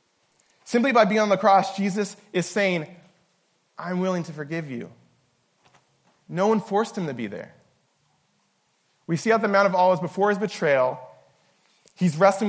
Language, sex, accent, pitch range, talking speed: English, male, American, 145-195 Hz, 160 wpm